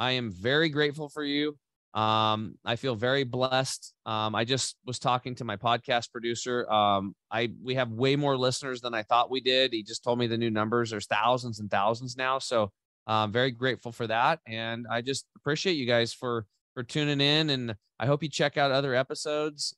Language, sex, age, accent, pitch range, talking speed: English, male, 20-39, American, 115-140 Hz, 205 wpm